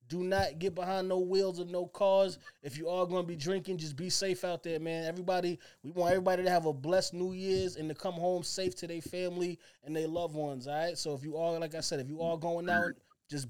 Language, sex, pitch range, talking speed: English, male, 145-180 Hz, 260 wpm